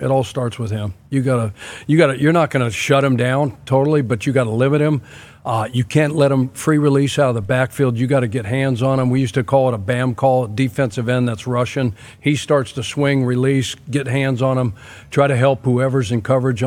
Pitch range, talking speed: 125-140 Hz, 245 wpm